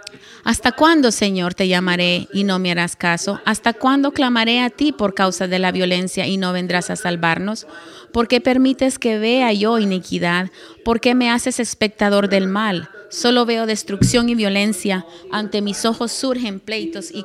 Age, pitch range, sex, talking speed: 30-49, 185-230 Hz, female, 175 wpm